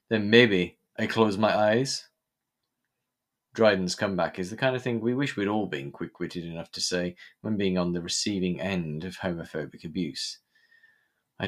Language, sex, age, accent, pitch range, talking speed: English, male, 30-49, British, 95-125 Hz, 175 wpm